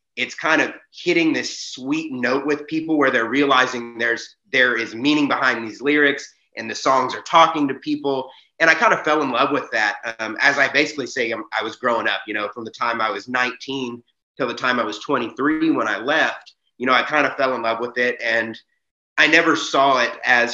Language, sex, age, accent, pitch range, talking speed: English, male, 30-49, American, 120-145 Hz, 225 wpm